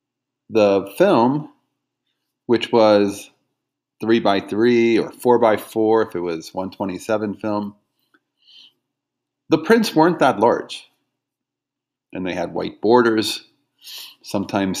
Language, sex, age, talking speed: English, male, 40-59, 110 wpm